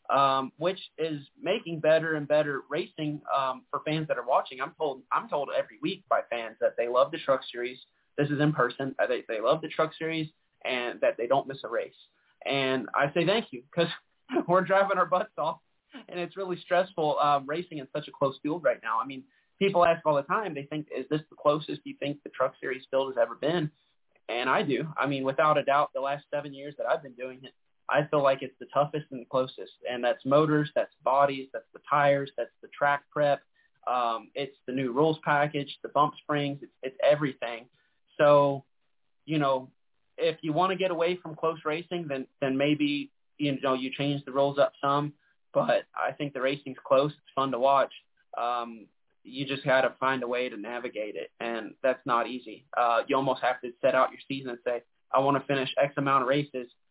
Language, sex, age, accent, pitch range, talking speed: English, male, 30-49, American, 130-155 Hz, 220 wpm